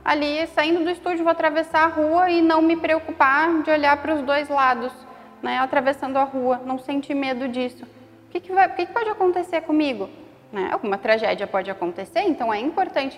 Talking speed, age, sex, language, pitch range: 185 wpm, 10-29, female, Portuguese, 210-275 Hz